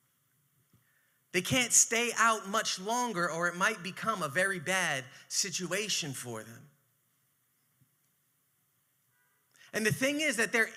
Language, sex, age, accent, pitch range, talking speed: English, male, 30-49, American, 140-220 Hz, 125 wpm